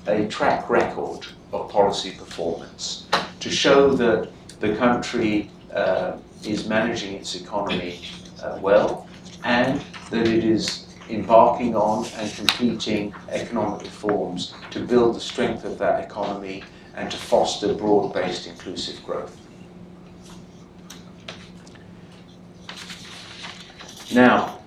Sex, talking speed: male, 100 wpm